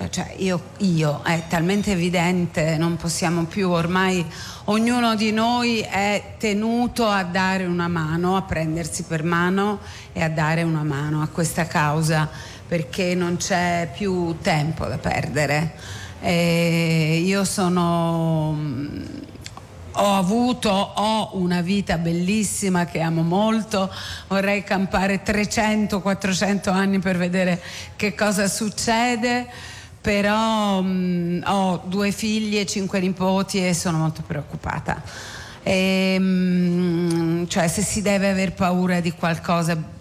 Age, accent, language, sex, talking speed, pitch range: 40-59, Italian, English, female, 115 wpm, 165-205 Hz